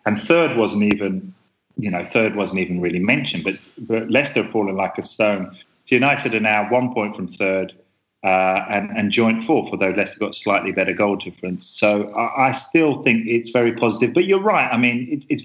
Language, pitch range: English, 100-120 Hz